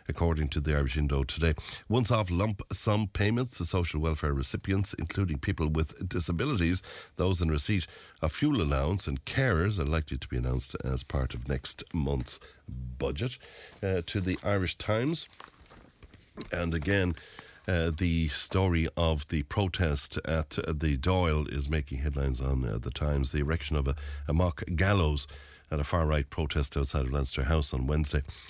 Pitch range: 70-95 Hz